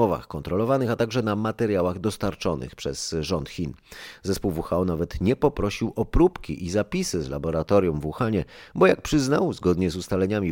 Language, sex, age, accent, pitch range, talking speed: Polish, male, 30-49, native, 80-105 Hz, 160 wpm